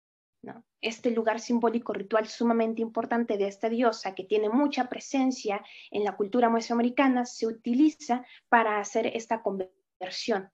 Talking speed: 135 wpm